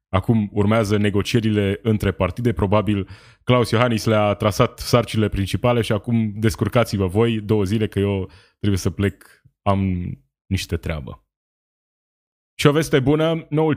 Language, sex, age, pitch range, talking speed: Romanian, male, 20-39, 95-115 Hz, 135 wpm